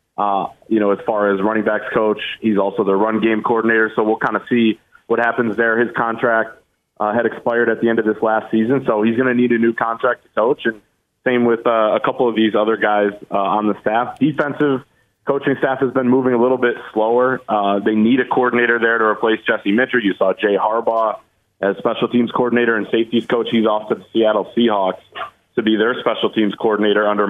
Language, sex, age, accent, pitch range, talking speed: English, male, 30-49, American, 110-120 Hz, 225 wpm